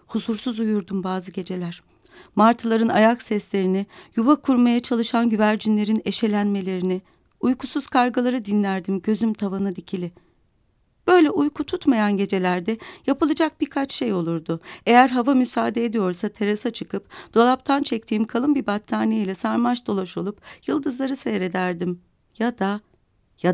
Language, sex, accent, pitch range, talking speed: Turkish, female, native, 185-245 Hz, 115 wpm